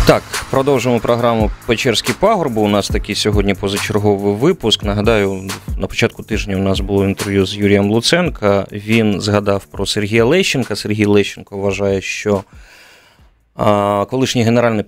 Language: Ukrainian